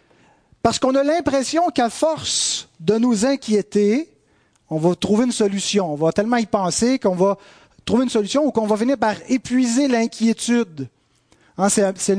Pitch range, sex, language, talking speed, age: 165-230 Hz, male, French, 160 wpm, 30-49